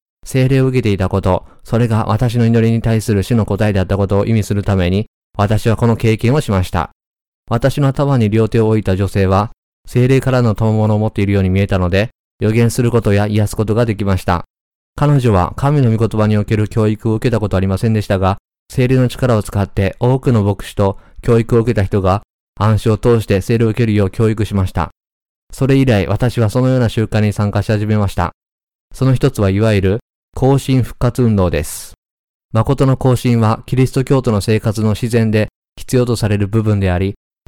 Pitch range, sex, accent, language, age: 100-120 Hz, male, native, Japanese, 20-39